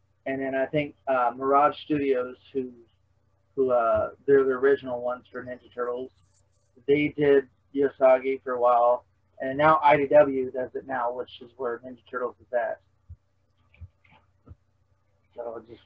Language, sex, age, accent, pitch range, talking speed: English, male, 30-49, American, 100-135 Hz, 150 wpm